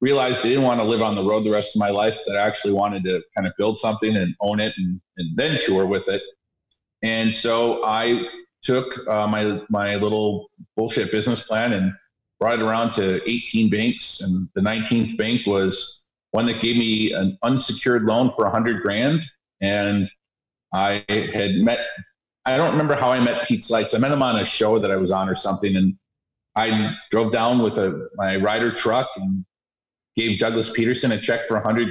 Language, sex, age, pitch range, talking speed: English, male, 40-59, 105-120 Hz, 205 wpm